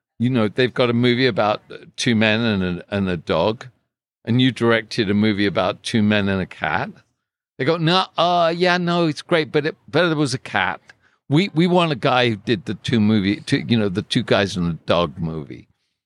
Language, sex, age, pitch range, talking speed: English, male, 60-79, 100-130 Hz, 230 wpm